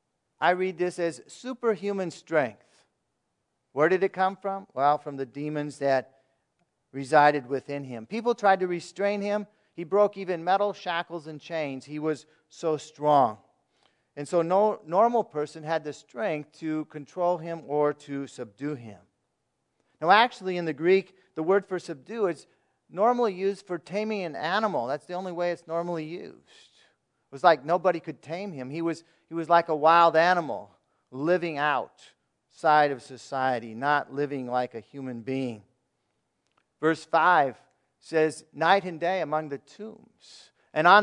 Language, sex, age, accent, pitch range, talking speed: English, male, 50-69, American, 145-185 Hz, 160 wpm